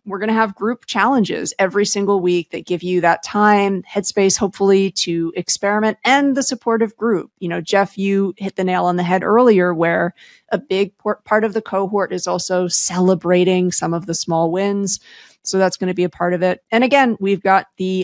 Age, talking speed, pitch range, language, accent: 30-49, 205 wpm, 180-220 Hz, English, American